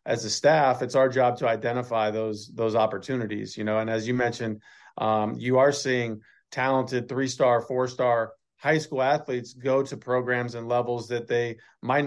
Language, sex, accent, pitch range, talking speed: English, male, American, 110-125 Hz, 175 wpm